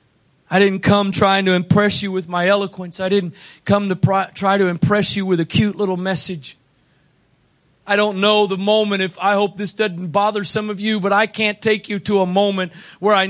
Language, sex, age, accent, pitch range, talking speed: English, male, 40-59, American, 195-235 Hz, 210 wpm